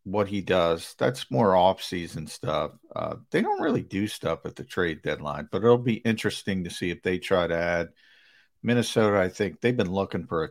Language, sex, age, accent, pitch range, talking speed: English, male, 50-69, American, 90-120 Hz, 210 wpm